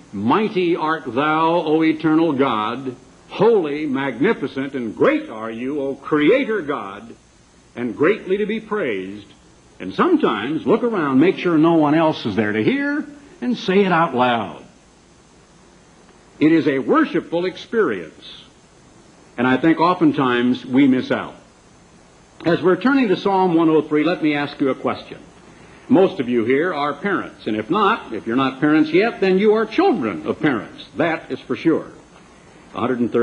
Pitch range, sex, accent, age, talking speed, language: 130-180 Hz, male, American, 70-89, 155 wpm, English